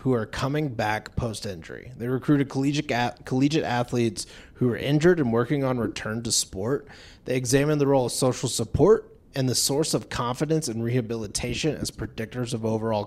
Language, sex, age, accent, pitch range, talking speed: English, male, 30-49, American, 110-140 Hz, 165 wpm